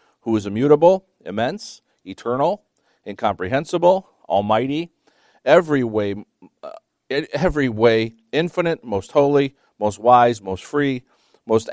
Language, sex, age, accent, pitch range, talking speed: English, male, 50-69, American, 105-135 Hz, 90 wpm